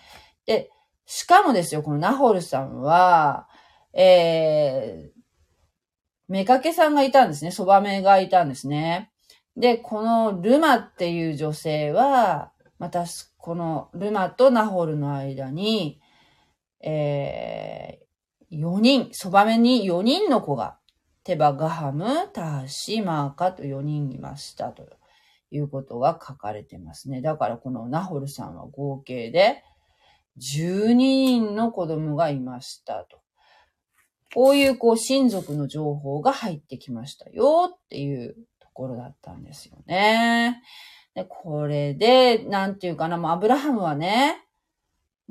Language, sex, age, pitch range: Japanese, female, 40-59, 145-225 Hz